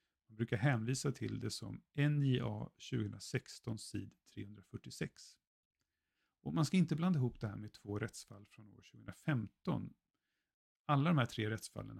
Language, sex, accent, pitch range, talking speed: Swedish, male, native, 110-140 Hz, 145 wpm